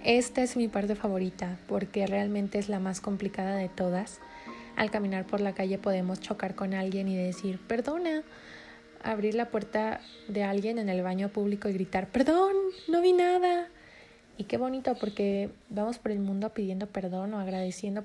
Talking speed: 175 wpm